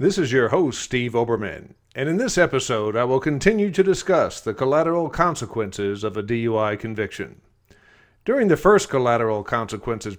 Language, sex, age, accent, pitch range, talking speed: English, male, 50-69, American, 110-155 Hz, 160 wpm